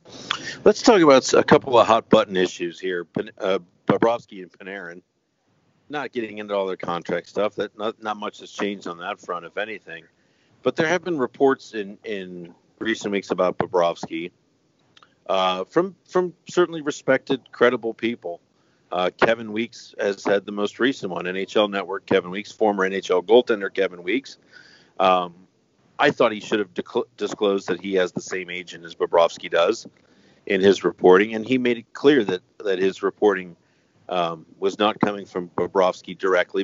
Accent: American